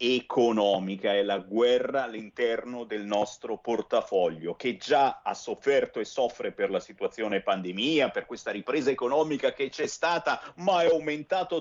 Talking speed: 145 wpm